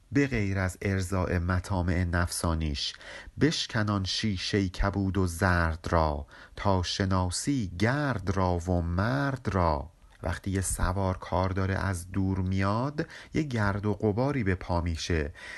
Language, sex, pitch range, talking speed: Persian, male, 95-125 Hz, 125 wpm